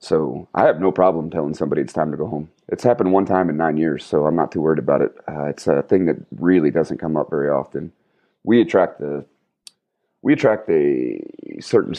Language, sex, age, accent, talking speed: English, male, 30-49, American, 220 wpm